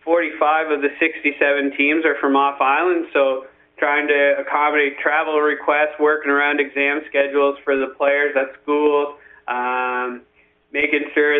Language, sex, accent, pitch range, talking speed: English, male, American, 140-150 Hz, 135 wpm